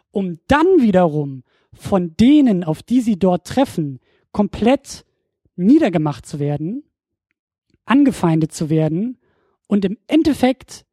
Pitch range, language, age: 185-260 Hz, German, 20-39